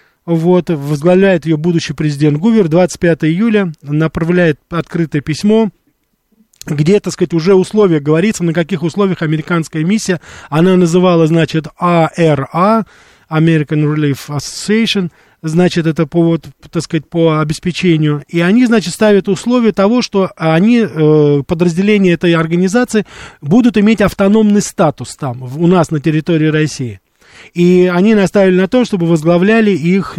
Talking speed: 130 wpm